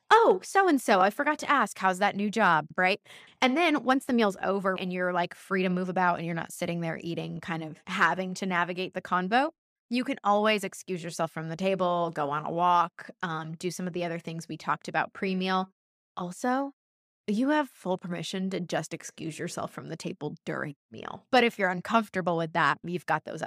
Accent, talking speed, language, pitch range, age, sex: American, 210 wpm, English, 175-235 Hz, 20-39, female